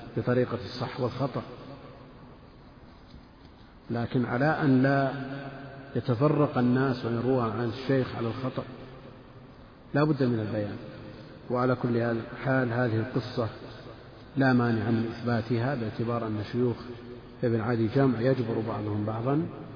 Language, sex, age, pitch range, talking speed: Arabic, male, 50-69, 115-135 Hz, 110 wpm